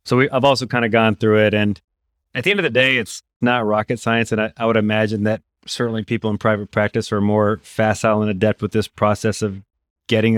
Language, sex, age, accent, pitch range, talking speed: English, male, 30-49, American, 105-115 Hz, 230 wpm